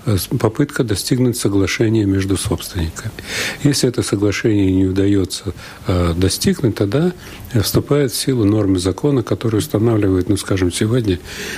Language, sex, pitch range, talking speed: Russian, male, 90-110 Hz, 115 wpm